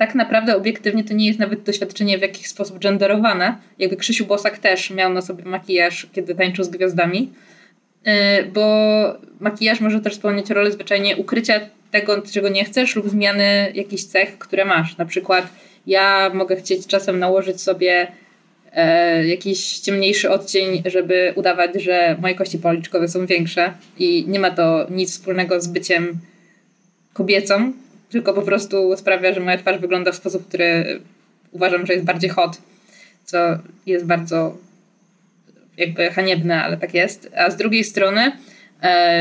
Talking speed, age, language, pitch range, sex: 150 wpm, 20-39, Polish, 185-205 Hz, female